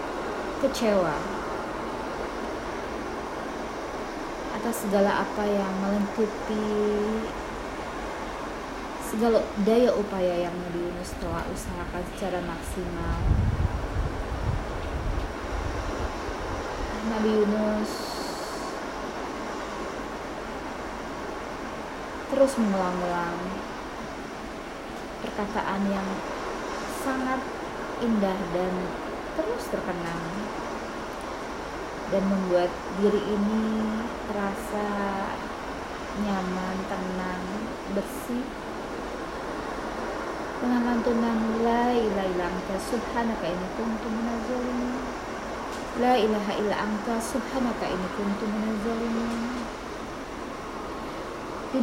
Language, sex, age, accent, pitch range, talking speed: Indonesian, female, 20-39, native, 190-230 Hz, 60 wpm